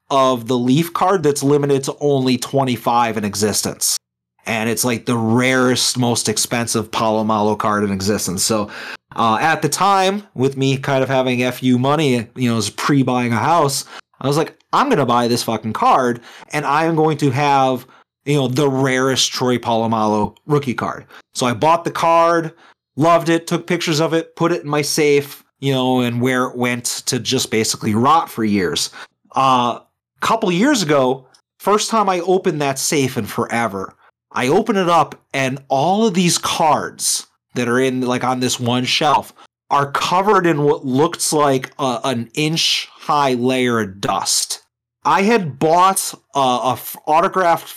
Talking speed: 180 wpm